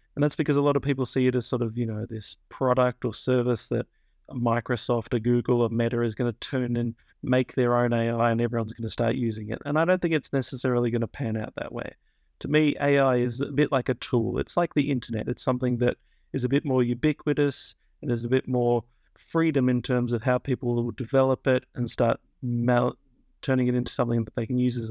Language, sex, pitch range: English, male, 120-135 Hz